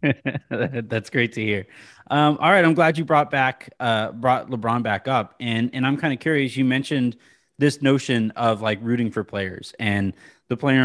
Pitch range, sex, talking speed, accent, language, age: 120-145 Hz, male, 195 wpm, American, English, 30-49